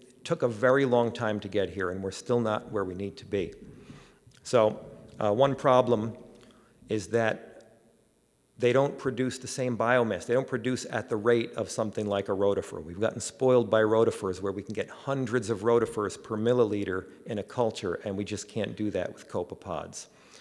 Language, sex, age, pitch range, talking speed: English, male, 50-69, 105-120 Hz, 190 wpm